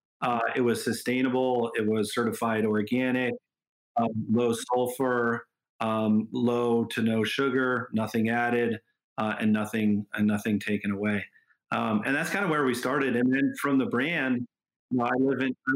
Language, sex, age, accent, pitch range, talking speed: English, male, 40-59, American, 115-135 Hz, 165 wpm